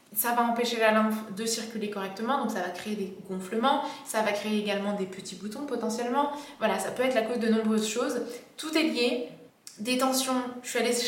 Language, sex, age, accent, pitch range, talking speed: French, female, 20-39, French, 220-250 Hz, 210 wpm